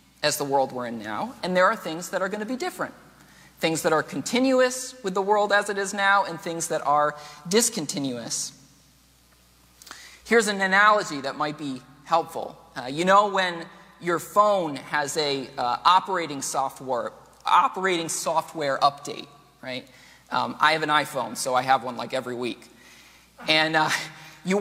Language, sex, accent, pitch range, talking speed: English, male, American, 150-200 Hz, 170 wpm